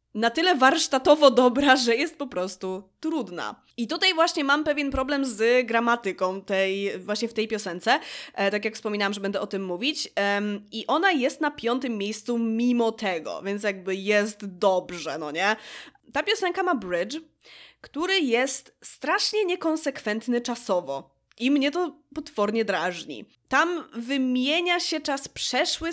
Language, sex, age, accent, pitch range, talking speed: Polish, female, 20-39, native, 210-300 Hz, 145 wpm